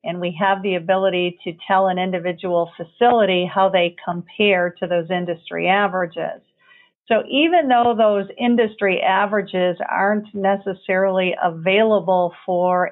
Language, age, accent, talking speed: English, 50-69, American, 125 wpm